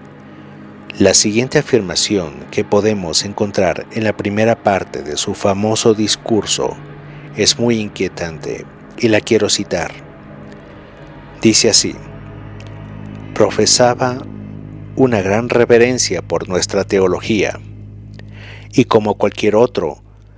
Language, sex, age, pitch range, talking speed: Spanish, male, 50-69, 100-115 Hz, 100 wpm